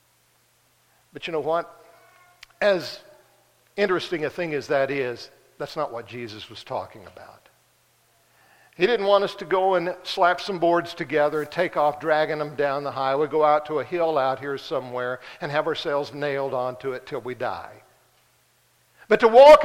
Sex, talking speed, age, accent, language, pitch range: male, 175 wpm, 60-79, American, English, 135-175 Hz